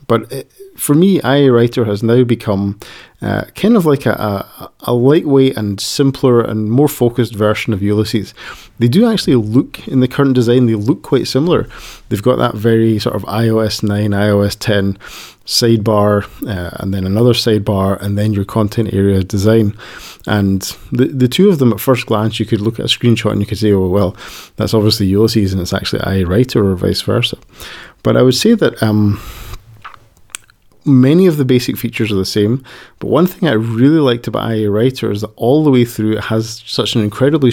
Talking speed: 195 wpm